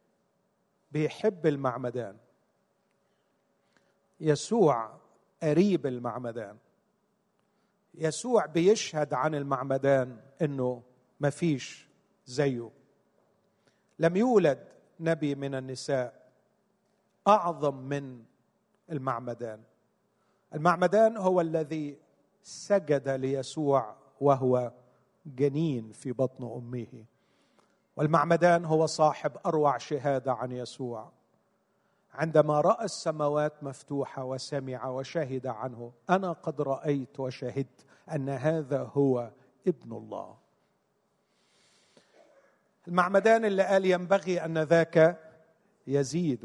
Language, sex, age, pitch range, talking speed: Arabic, male, 40-59, 130-195 Hz, 80 wpm